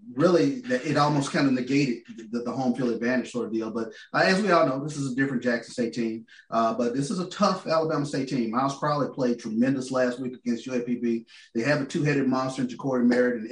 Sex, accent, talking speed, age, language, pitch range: male, American, 230 wpm, 30-49, English, 115-140 Hz